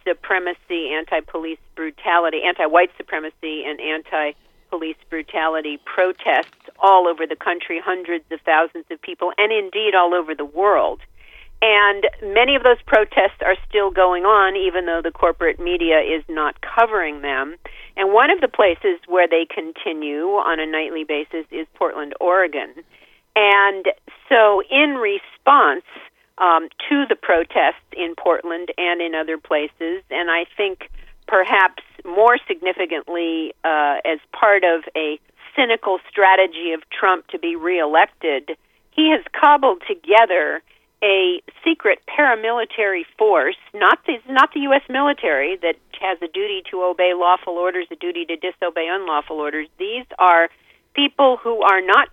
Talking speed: 140 wpm